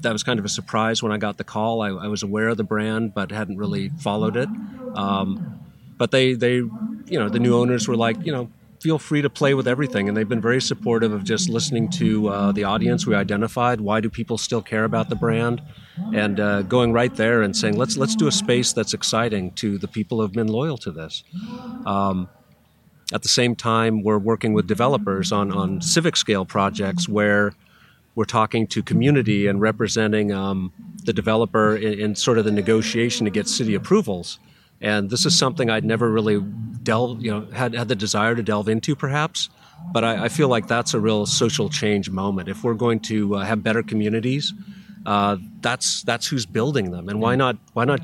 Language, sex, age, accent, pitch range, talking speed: English, male, 40-59, American, 105-130 Hz, 210 wpm